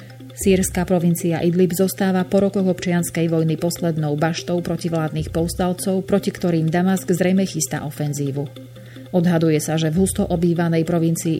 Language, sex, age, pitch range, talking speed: Slovak, female, 30-49, 150-180 Hz, 130 wpm